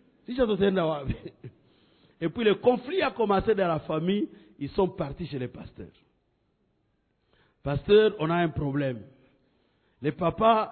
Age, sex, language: 50-69, male, English